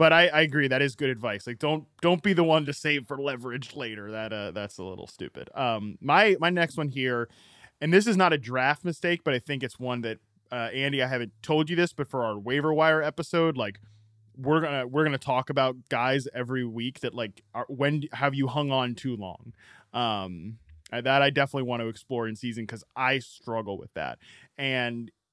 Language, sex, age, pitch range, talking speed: English, male, 20-39, 115-150 Hz, 215 wpm